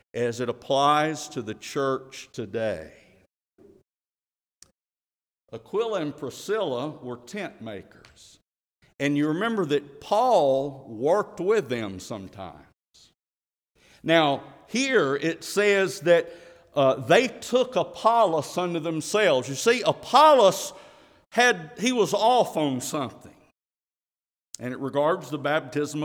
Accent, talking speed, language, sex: American, 110 wpm, English, male